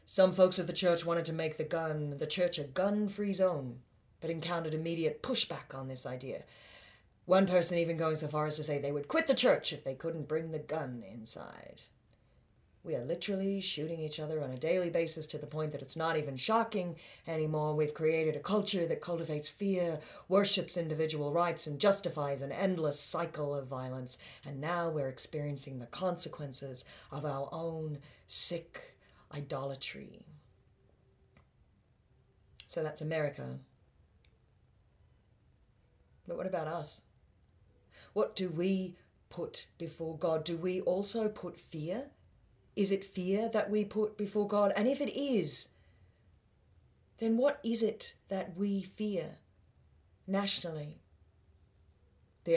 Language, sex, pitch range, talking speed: English, female, 140-185 Hz, 145 wpm